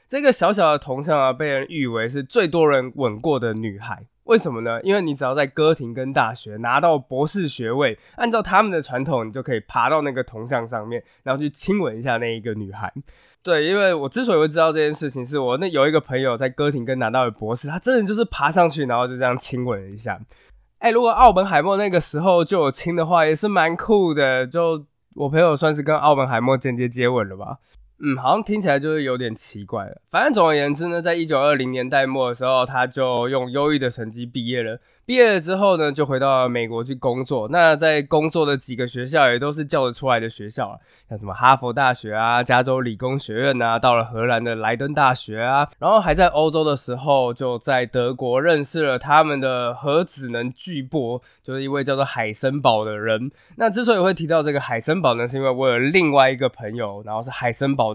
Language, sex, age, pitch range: Chinese, male, 20-39, 125-155 Hz